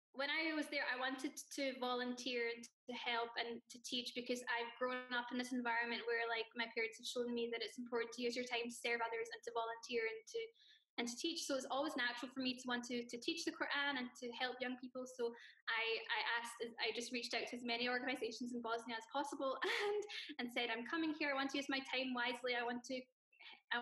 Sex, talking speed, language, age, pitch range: female, 245 wpm, English, 10-29, 240-285 Hz